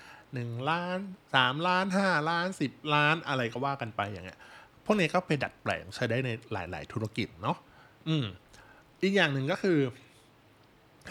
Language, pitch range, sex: Thai, 115-155 Hz, male